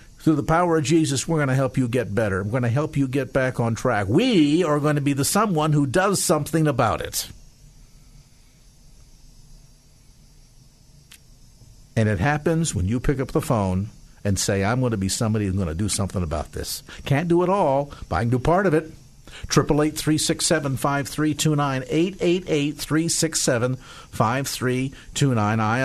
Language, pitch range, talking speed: English, 120-155 Hz, 165 wpm